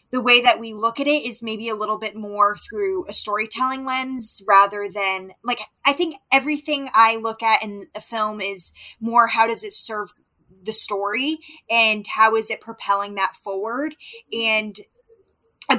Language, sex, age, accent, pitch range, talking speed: English, female, 20-39, American, 200-240 Hz, 175 wpm